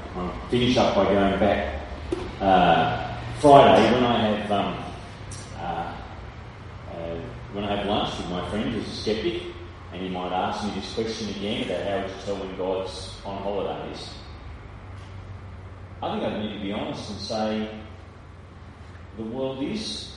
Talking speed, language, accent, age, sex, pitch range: 155 wpm, English, Australian, 40-59, male, 95-115 Hz